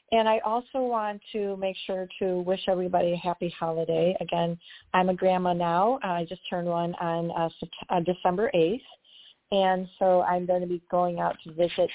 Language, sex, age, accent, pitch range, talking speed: English, female, 40-59, American, 175-200 Hz, 180 wpm